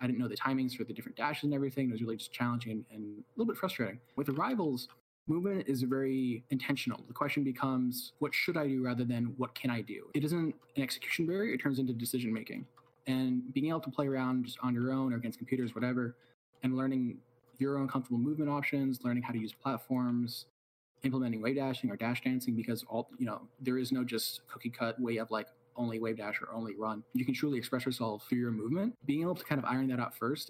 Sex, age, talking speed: male, 20-39, 230 wpm